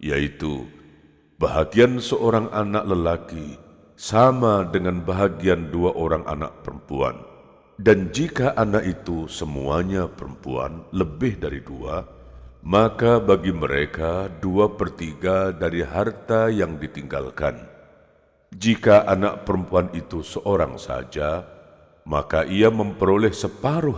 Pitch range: 80-110 Hz